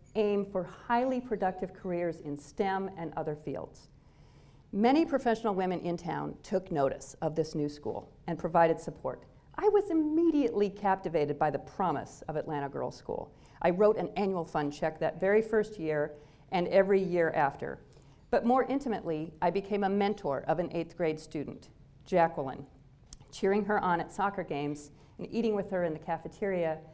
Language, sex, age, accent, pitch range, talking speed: English, female, 50-69, American, 150-205 Hz, 165 wpm